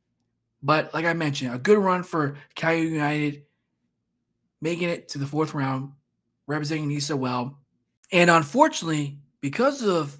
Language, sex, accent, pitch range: English, male, American, 135-180 Hz